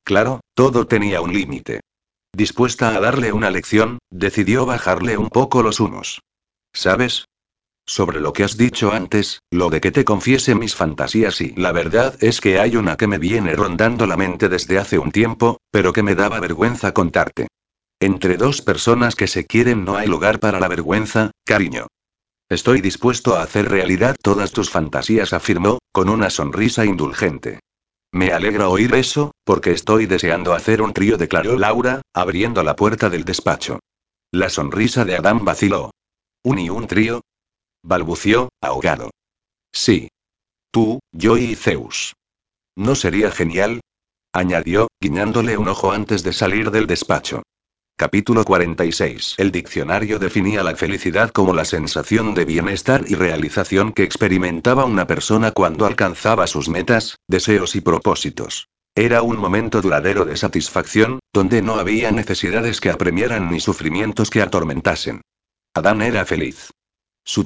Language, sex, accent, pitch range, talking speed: Spanish, male, Spanish, 95-115 Hz, 150 wpm